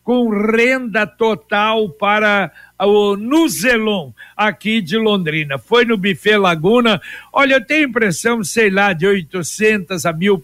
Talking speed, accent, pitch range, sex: 140 wpm, Brazilian, 195-235 Hz, male